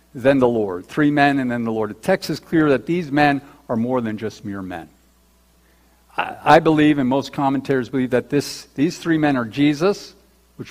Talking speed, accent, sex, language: 200 wpm, American, male, English